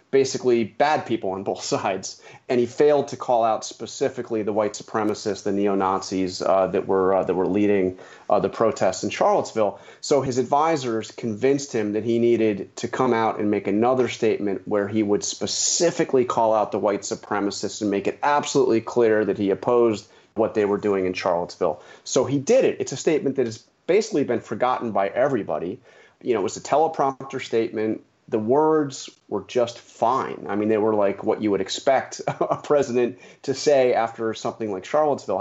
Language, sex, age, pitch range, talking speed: English, male, 30-49, 105-130 Hz, 190 wpm